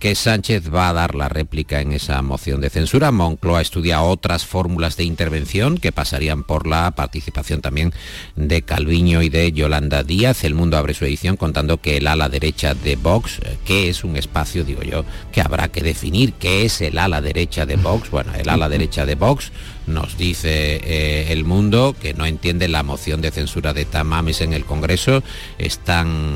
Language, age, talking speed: Spanish, 50-69, 190 wpm